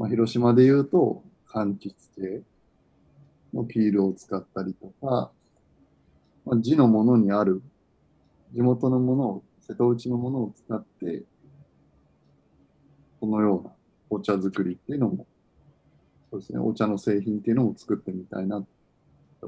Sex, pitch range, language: male, 95-130 Hz, Japanese